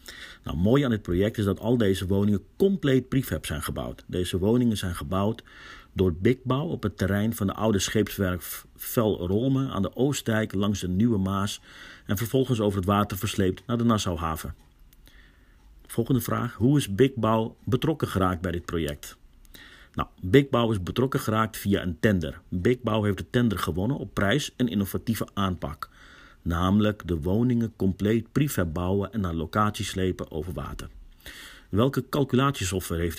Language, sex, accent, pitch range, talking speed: Dutch, male, Dutch, 90-120 Hz, 160 wpm